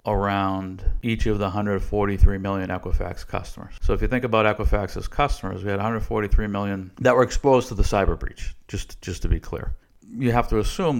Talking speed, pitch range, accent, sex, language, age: 190 wpm, 95-110 Hz, American, male, English, 50-69